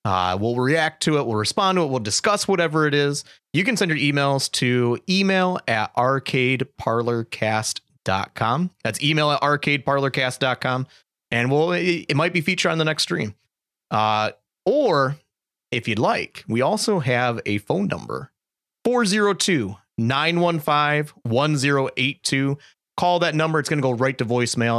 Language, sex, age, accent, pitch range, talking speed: English, male, 30-49, American, 115-155 Hz, 150 wpm